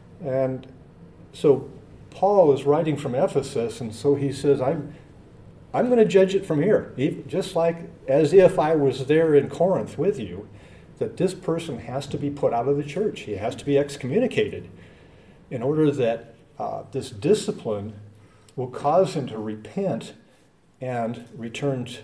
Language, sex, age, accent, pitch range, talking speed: English, male, 50-69, American, 120-150 Hz, 165 wpm